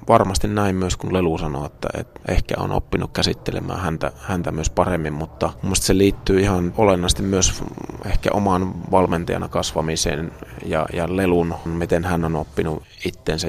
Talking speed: 155 wpm